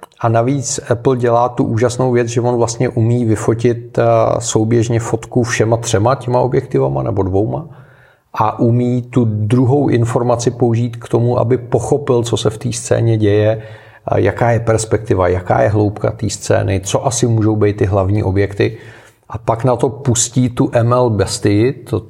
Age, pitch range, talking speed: 40-59, 110-125 Hz, 165 wpm